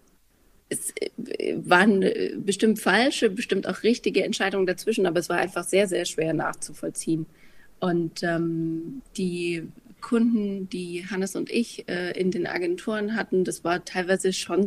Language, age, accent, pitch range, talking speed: English, 30-49, German, 175-205 Hz, 140 wpm